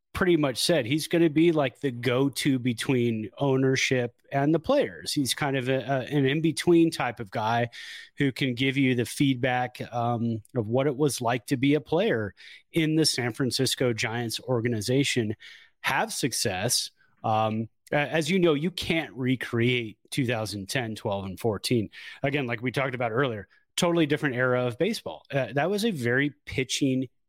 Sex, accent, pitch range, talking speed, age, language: male, American, 115-145 Hz, 170 wpm, 30-49, English